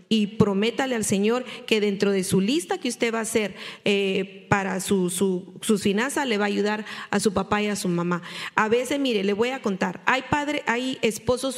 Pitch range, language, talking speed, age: 200-255 Hz, English, 220 wpm, 40-59